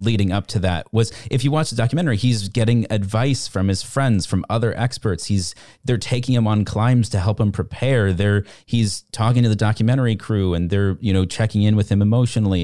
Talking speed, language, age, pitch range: 215 wpm, English, 30-49, 90-115 Hz